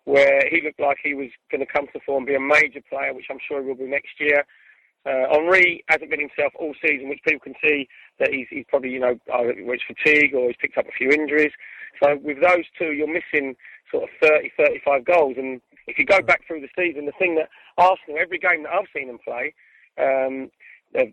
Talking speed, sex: 235 wpm, male